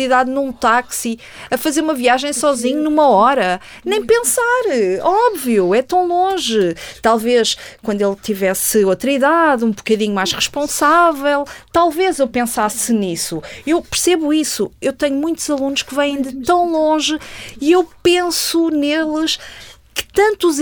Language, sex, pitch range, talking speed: Portuguese, female, 235-340 Hz, 140 wpm